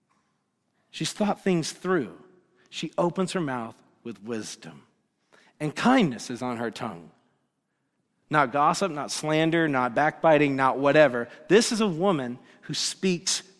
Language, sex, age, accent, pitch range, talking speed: English, male, 40-59, American, 170-210 Hz, 130 wpm